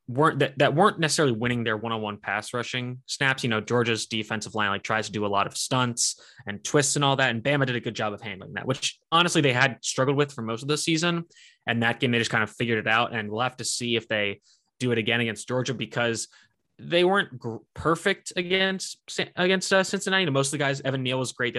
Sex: male